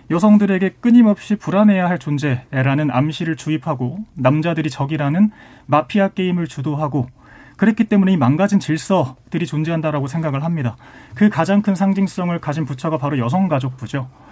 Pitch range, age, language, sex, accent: 140-200 Hz, 30-49, Korean, male, native